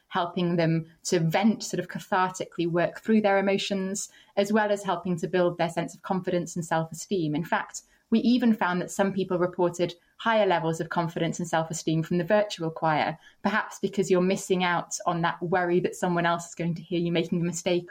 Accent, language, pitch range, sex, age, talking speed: British, English, 170-205 Hz, female, 20-39, 205 wpm